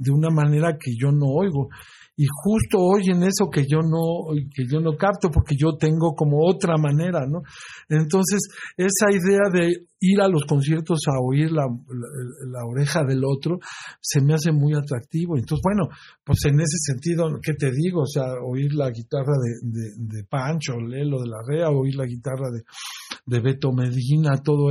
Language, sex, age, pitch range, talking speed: Spanish, male, 50-69, 140-175 Hz, 185 wpm